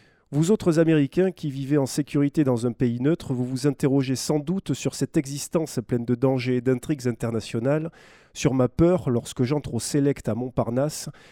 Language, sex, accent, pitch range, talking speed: French, male, French, 120-155 Hz, 180 wpm